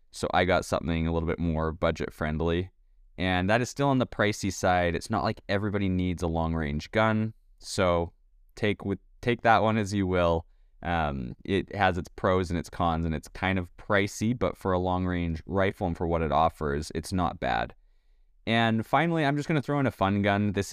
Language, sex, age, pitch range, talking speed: English, male, 20-39, 85-105 Hz, 210 wpm